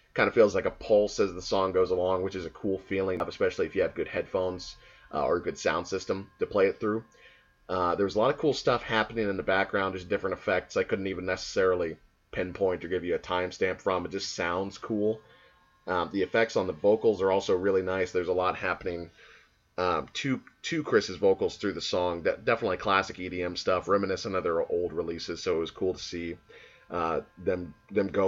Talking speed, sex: 215 wpm, male